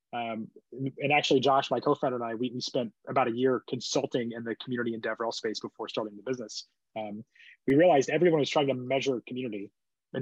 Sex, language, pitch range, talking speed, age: male, English, 120-145 Hz, 200 wpm, 20-39